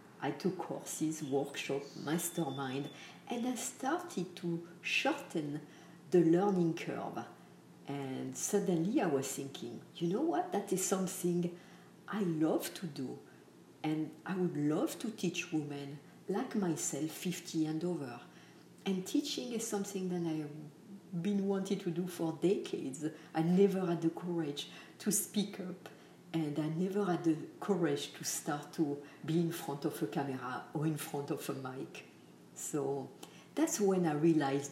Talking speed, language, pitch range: 150 wpm, English, 145-190 Hz